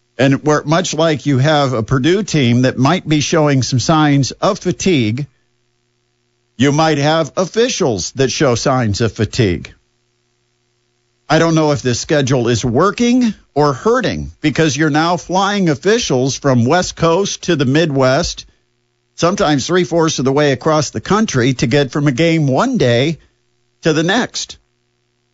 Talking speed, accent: 155 wpm, American